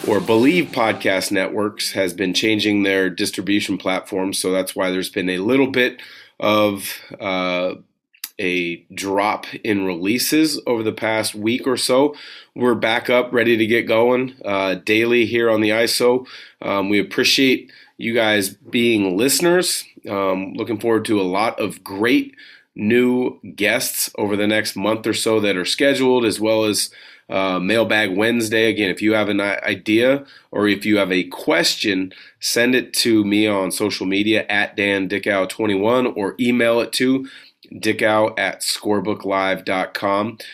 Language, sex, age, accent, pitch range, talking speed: English, male, 30-49, American, 100-120 Hz, 150 wpm